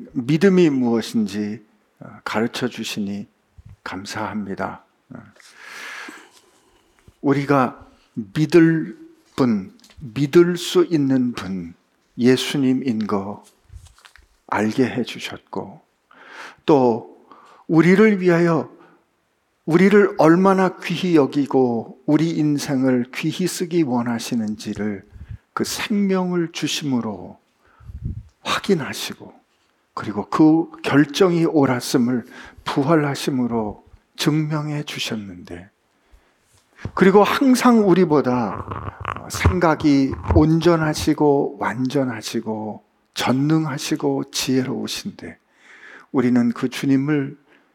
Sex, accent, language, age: male, native, Korean, 50-69